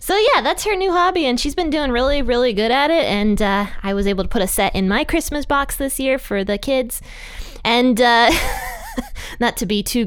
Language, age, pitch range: English, 20-39, 190-270 Hz